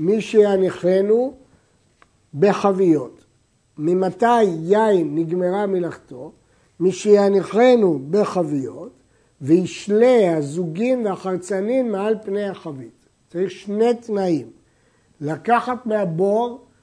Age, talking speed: 60-79, 75 wpm